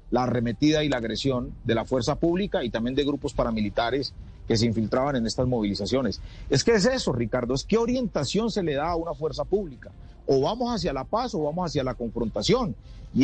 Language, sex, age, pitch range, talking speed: Spanish, male, 40-59, 130-200 Hz, 210 wpm